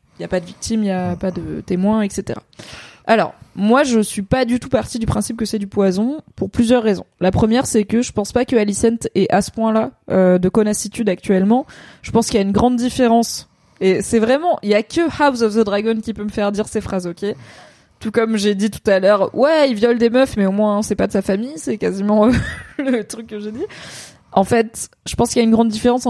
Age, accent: 20-39, French